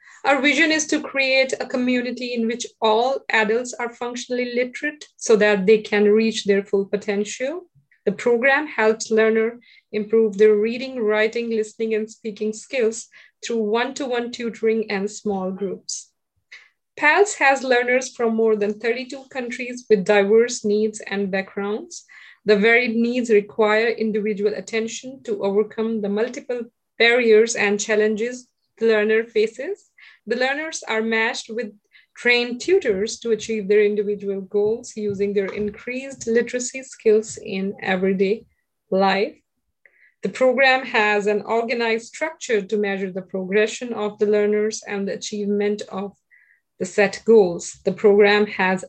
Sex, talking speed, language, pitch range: female, 135 wpm, English, 210-245 Hz